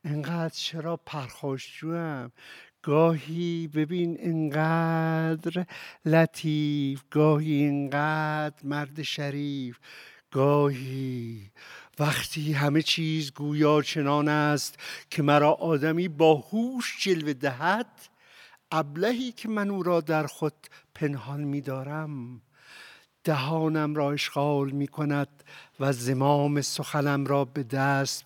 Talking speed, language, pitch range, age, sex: 95 wpm, Persian, 140-165 Hz, 60-79, male